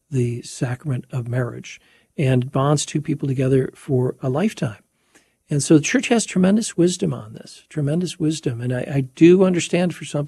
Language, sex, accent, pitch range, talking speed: English, male, American, 125-155 Hz, 175 wpm